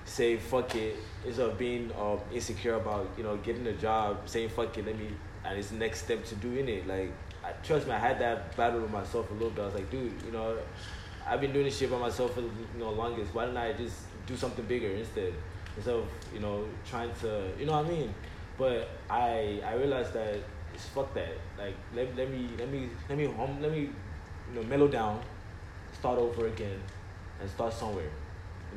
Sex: male